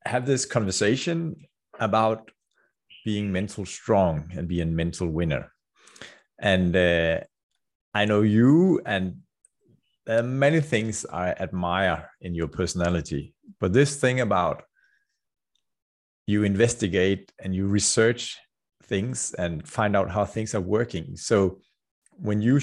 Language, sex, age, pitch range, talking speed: Danish, male, 30-49, 90-120 Hz, 120 wpm